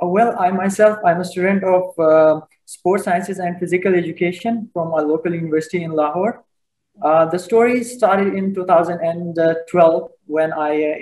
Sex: male